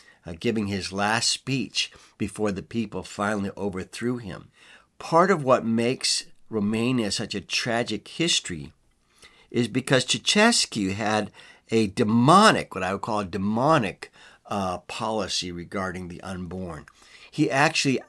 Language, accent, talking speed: English, American, 130 wpm